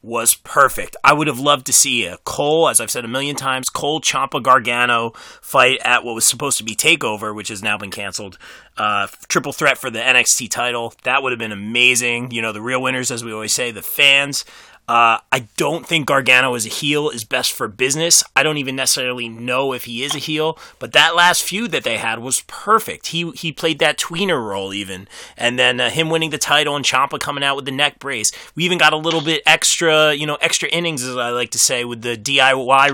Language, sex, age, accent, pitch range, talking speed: English, male, 30-49, American, 125-160 Hz, 230 wpm